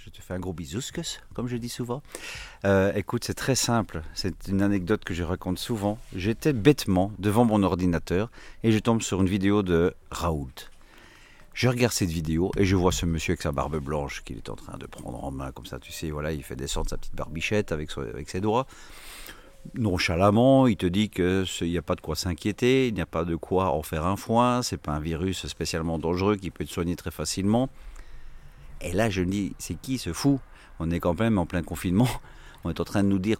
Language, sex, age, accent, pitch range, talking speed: French, male, 50-69, French, 85-110 Hz, 230 wpm